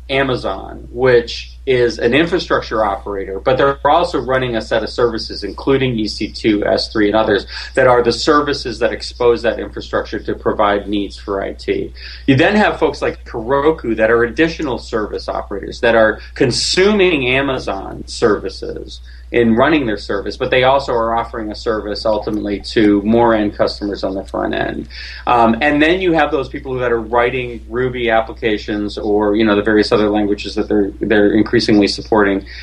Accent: American